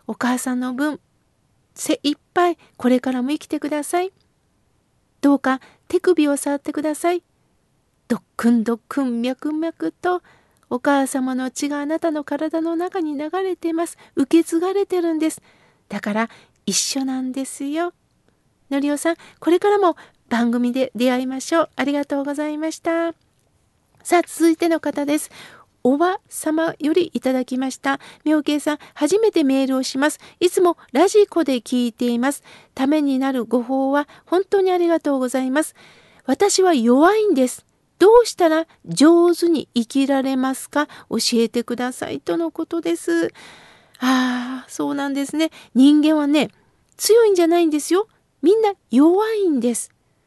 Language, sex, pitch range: Japanese, female, 260-335 Hz